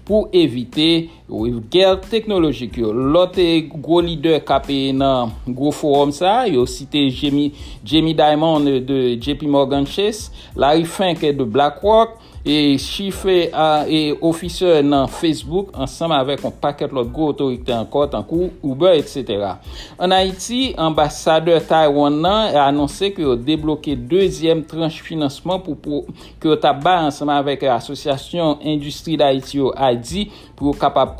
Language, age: English, 60-79